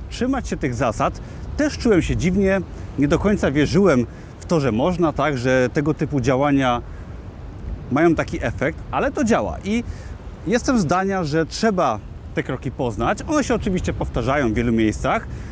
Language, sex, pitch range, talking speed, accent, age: Polish, male, 125-185 Hz, 160 wpm, native, 30-49